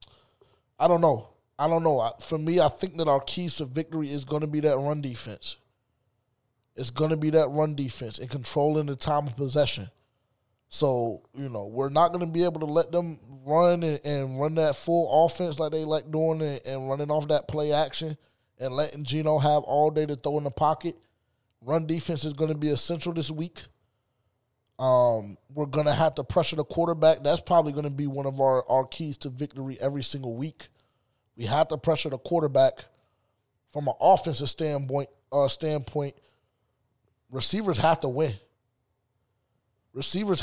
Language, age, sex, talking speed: English, 20-39, male, 180 wpm